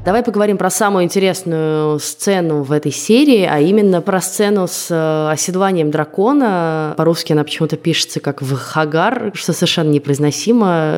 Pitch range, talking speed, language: 150-195 Hz, 140 wpm, Russian